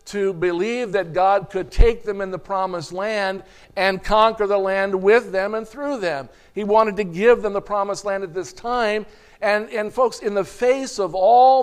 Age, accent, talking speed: 50-69, American, 200 wpm